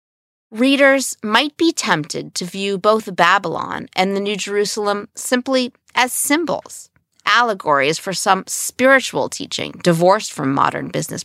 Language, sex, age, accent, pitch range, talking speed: English, female, 40-59, American, 185-250 Hz, 130 wpm